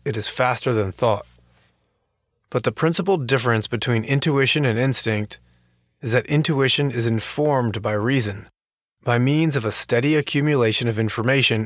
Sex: male